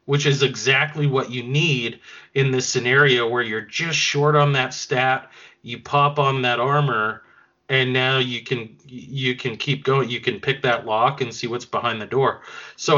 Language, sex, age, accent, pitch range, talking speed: English, male, 30-49, American, 125-150 Hz, 190 wpm